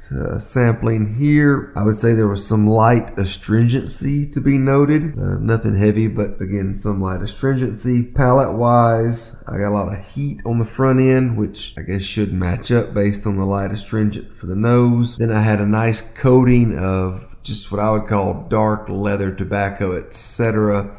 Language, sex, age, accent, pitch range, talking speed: English, male, 30-49, American, 100-115 Hz, 185 wpm